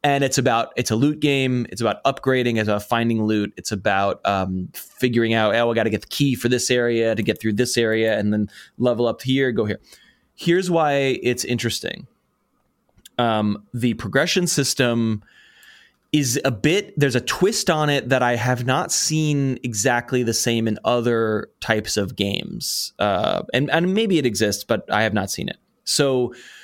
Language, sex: English, male